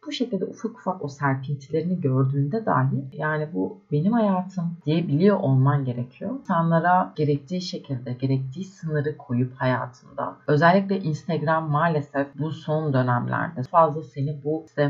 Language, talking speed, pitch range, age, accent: Turkish, 135 wpm, 135-180 Hz, 30-49, native